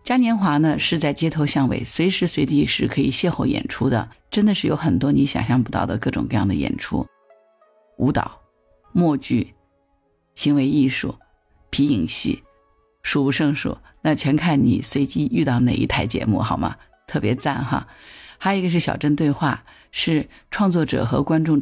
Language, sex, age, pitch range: Chinese, female, 50-69, 125-155 Hz